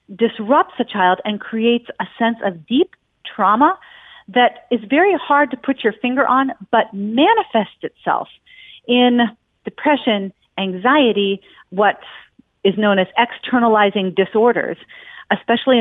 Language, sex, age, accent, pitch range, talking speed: English, female, 40-59, American, 220-280 Hz, 120 wpm